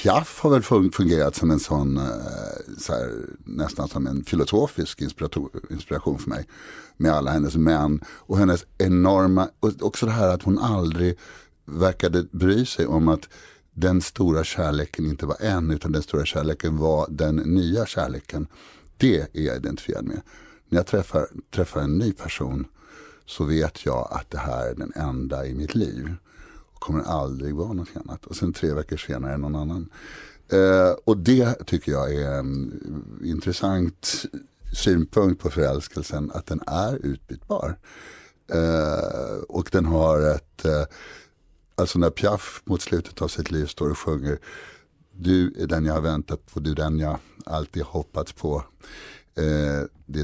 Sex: male